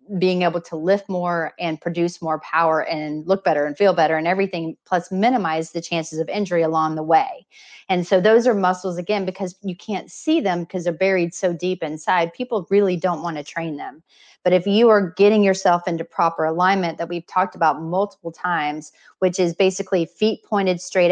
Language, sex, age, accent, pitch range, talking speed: English, female, 30-49, American, 160-190 Hz, 200 wpm